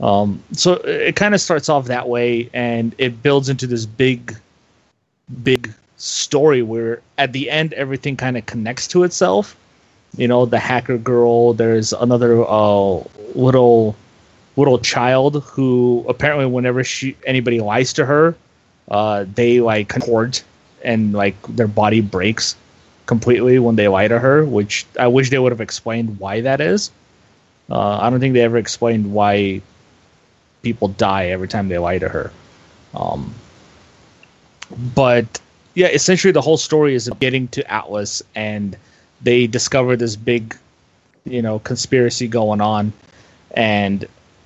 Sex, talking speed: male, 150 wpm